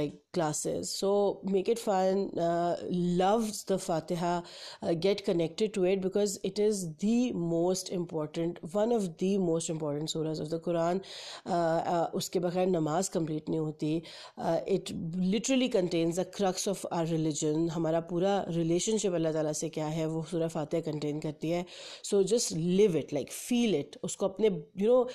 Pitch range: 160-195 Hz